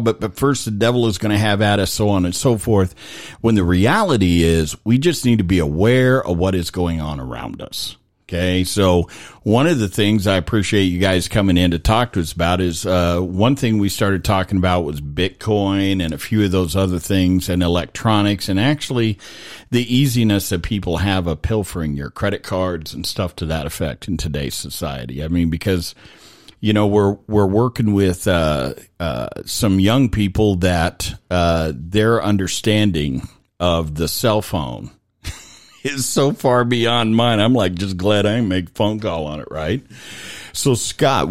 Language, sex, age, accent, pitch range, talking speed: English, male, 50-69, American, 90-115 Hz, 190 wpm